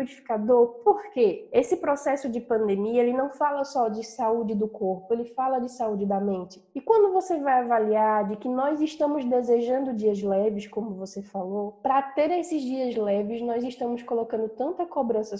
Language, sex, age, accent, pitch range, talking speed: Portuguese, female, 10-29, Brazilian, 225-275 Hz, 175 wpm